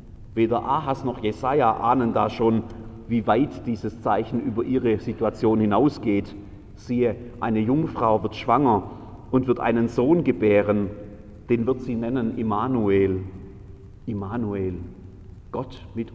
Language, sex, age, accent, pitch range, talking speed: German, male, 40-59, German, 100-130 Hz, 125 wpm